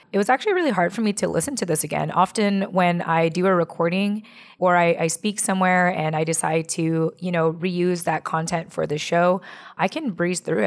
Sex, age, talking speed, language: female, 20-39, 220 wpm, English